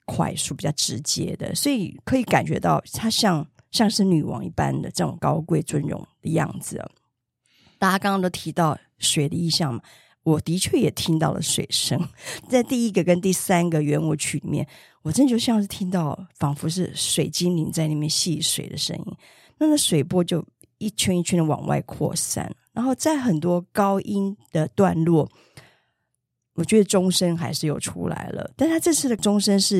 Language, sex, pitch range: Chinese, female, 160-210 Hz